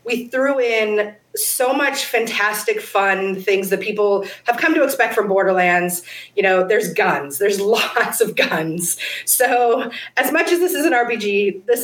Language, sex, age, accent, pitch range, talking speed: English, female, 30-49, American, 200-255 Hz, 165 wpm